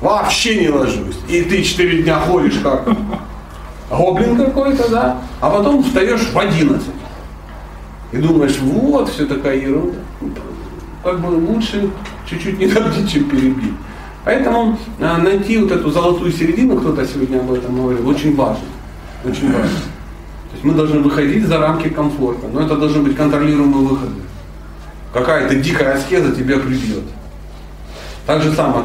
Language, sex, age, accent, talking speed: Russian, male, 40-59, native, 140 wpm